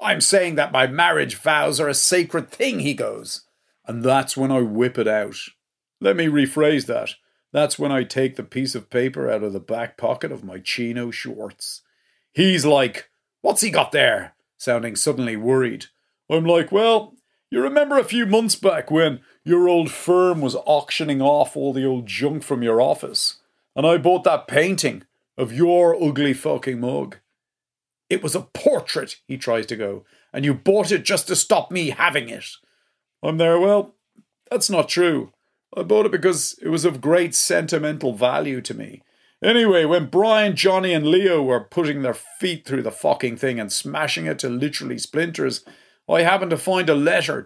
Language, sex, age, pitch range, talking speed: English, male, 40-59, 130-180 Hz, 180 wpm